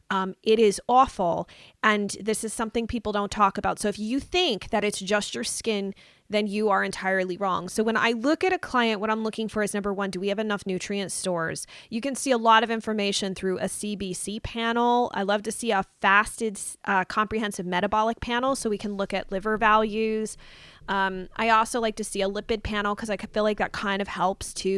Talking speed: 225 wpm